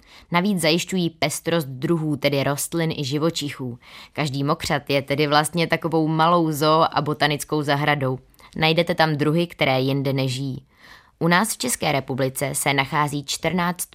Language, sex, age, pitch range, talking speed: Czech, female, 20-39, 140-165 Hz, 140 wpm